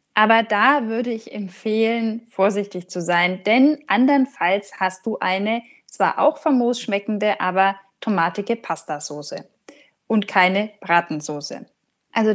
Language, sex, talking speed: German, female, 115 wpm